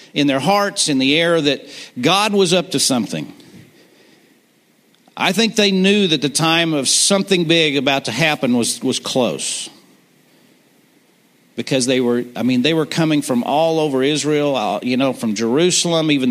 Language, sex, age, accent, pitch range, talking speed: English, male, 50-69, American, 120-150 Hz, 165 wpm